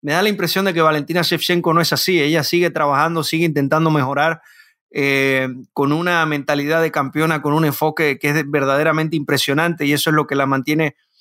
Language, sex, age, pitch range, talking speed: Spanish, male, 30-49, 150-170 Hz, 205 wpm